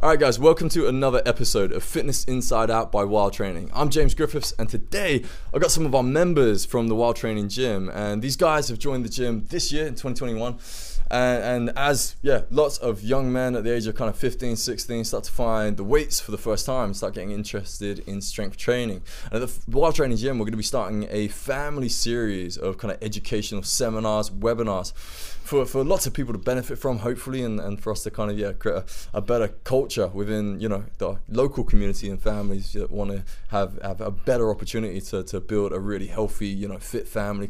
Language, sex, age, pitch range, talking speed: English, male, 20-39, 100-125 Hz, 225 wpm